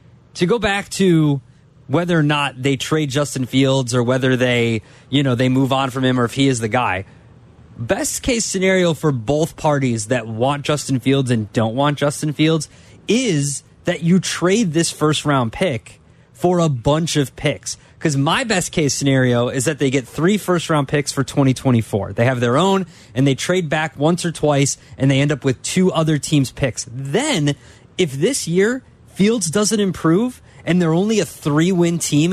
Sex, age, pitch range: male, 20-39, 135-175 Hz